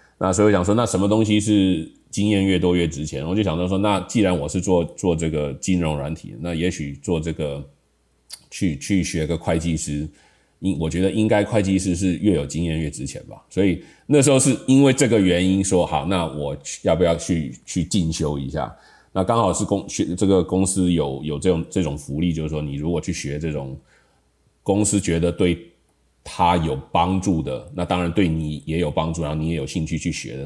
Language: Chinese